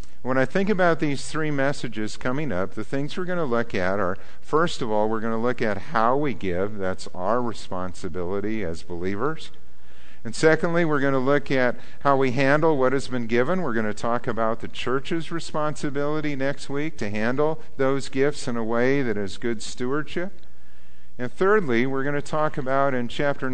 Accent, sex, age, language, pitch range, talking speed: American, male, 50-69, English, 90-140 Hz, 195 wpm